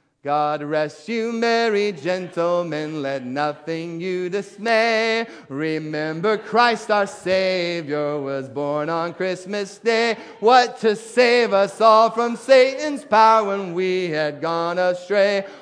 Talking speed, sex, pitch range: 120 wpm, male, 150-205 Hz